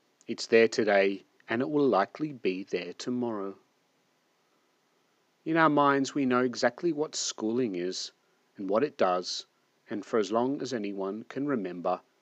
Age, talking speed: 40-59, 150 wpm